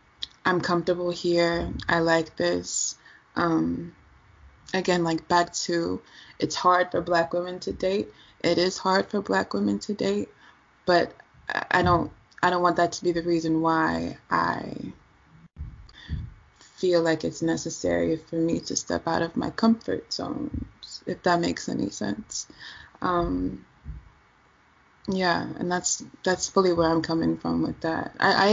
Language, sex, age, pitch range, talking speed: English, female, 20-39, 160-180 Hz, 150 wpm